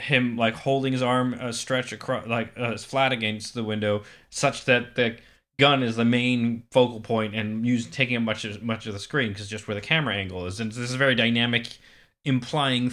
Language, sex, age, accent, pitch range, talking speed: English, male, 20-39, American, 115-140 Hz, 220 wpm